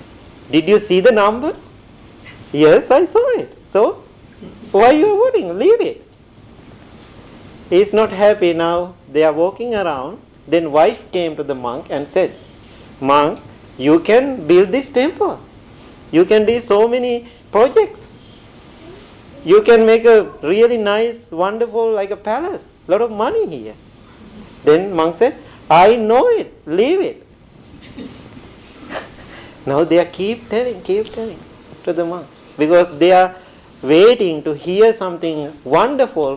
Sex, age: male, 50-69